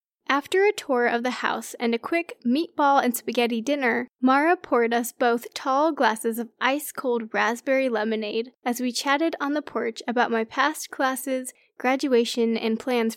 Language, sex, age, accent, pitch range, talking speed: English, female, 10-29, American, 235-285 Hz, 165 wpm